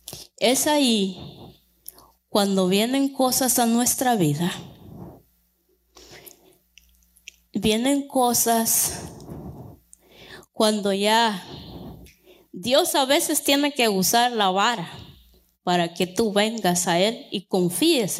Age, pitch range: 20-39, 180-240 Hz